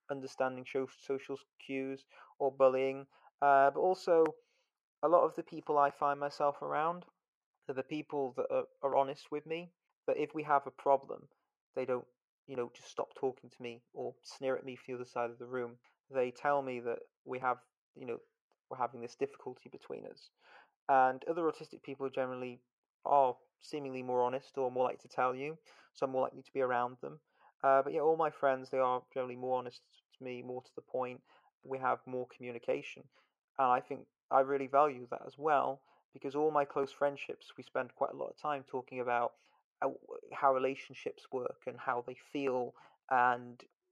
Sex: male